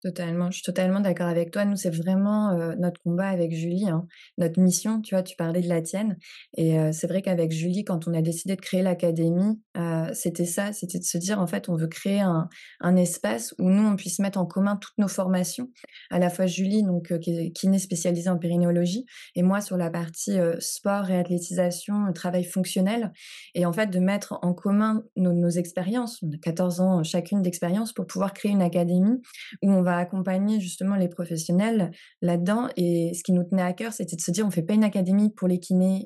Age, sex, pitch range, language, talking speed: 20-39, female, 175-205 Hz, French, 225 wpm